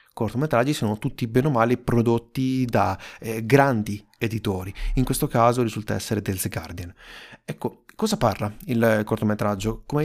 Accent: native